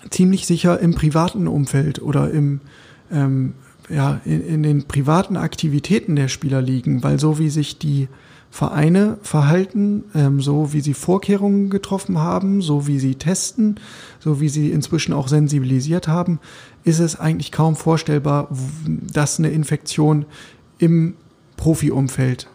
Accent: German